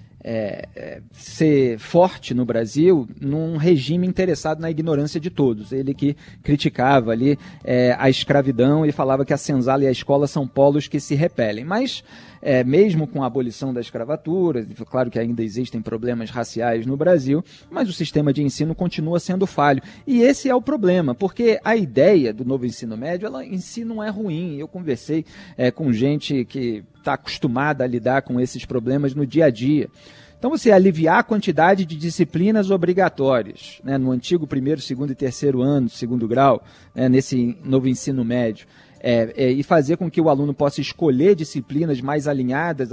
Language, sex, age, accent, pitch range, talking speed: Portuguese, male, 40-59, Brazilian, 130-185 Hz, 170 wpm